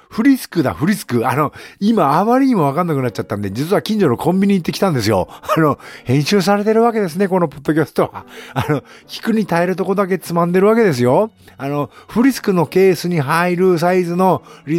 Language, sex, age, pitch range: Japanese, male, 50-69, 115-190 Hz